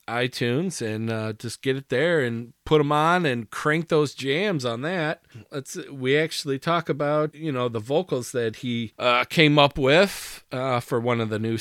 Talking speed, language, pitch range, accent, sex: 195 wpm, English, 120-155 Hz, American, male